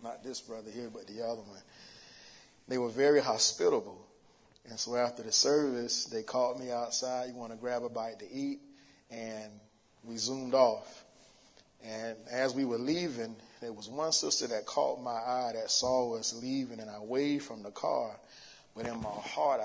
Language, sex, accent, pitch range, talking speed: English, male, American, 110-130 Hz, 185 wpm